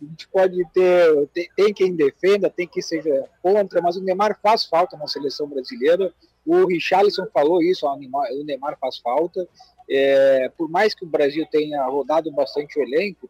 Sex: male